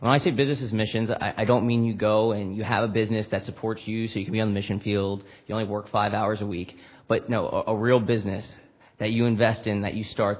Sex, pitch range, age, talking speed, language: male, 105-115 Hz, 30-49, 265 wpm, English